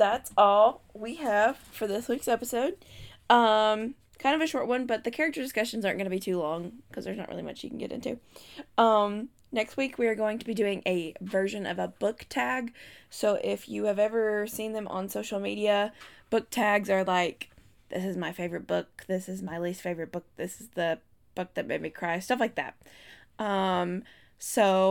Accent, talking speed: American, 205 wpm